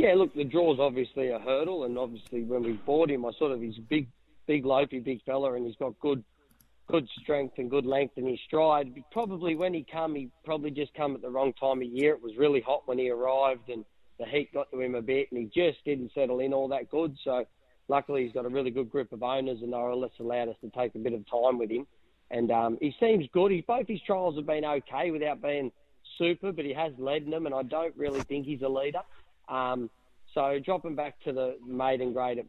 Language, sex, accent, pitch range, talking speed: English, male, Australian, 120-145 Hz, 245 wpm